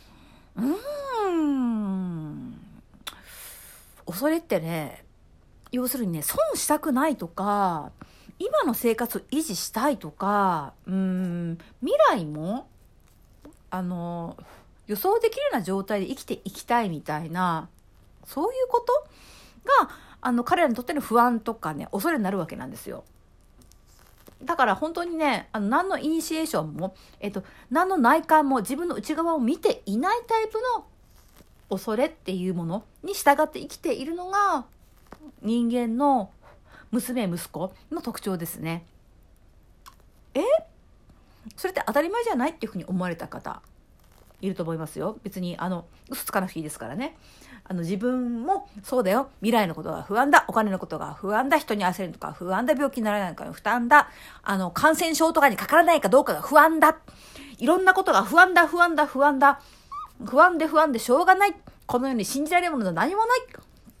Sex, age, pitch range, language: female, 50-69, 190-310 Hz, Japanese